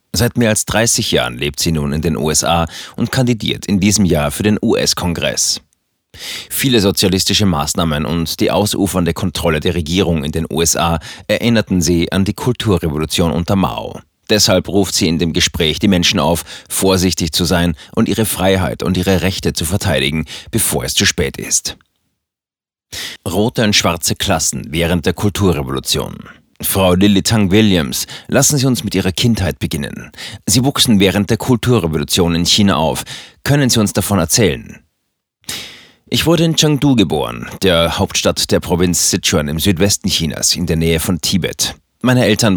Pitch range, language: 85-105 Hz, German